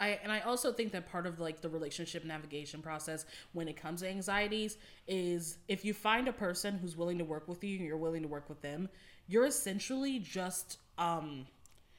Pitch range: 170-225 Hz